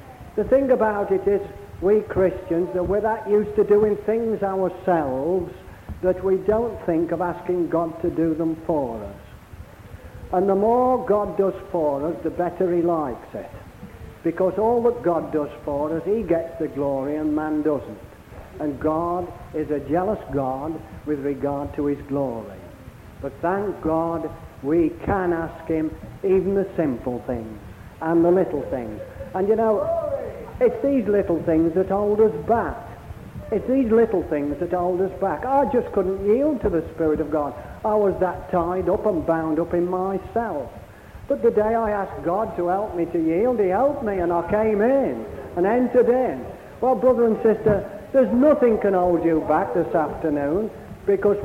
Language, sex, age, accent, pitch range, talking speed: English, male, 60-79, British, 155-210 Hz, 175 wpm